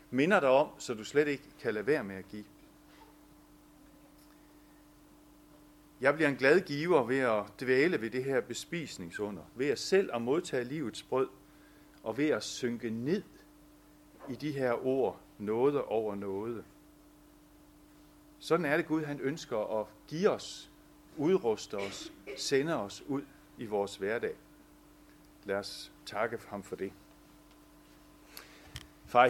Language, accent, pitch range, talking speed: Danish, native, 105-145 Hz, 140 wpm